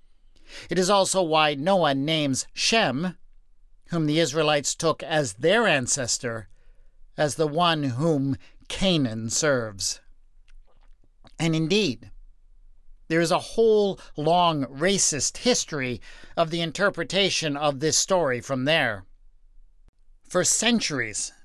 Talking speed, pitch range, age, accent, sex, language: 110 wpm, 135-180 Hz, 50-69, American, male, English